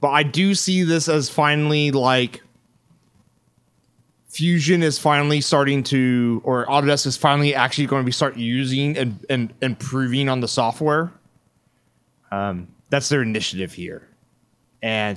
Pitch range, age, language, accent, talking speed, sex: 120-160 Hz, 30-49, English, American, 140 wpm, male